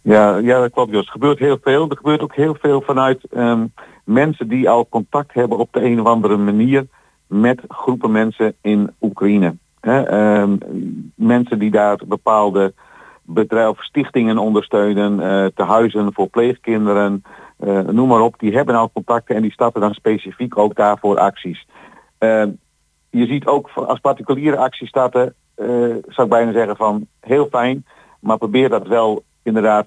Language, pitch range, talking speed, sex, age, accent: Dutch, 105-125 Hz, 165 wpm, male, 50-69, Dutch